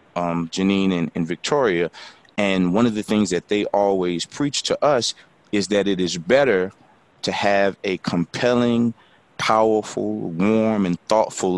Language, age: English, 30-49